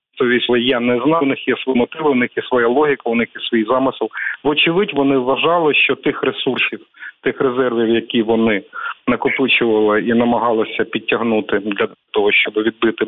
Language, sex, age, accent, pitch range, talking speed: Ukrainian, male, 40-59, native, 115-150 Hz, 165 wpm